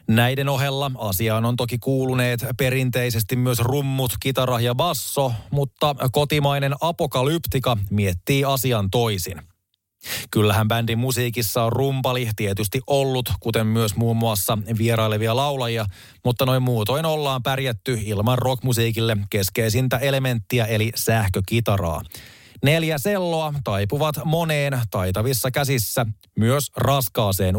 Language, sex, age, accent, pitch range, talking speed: Finnish, male, 30-49, native, 110-130 Hz, 110 wpm